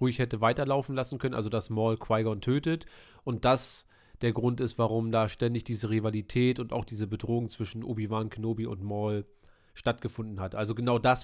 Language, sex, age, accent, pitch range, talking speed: German, male, 30-49, German, 110-130 Hz, 180 wpm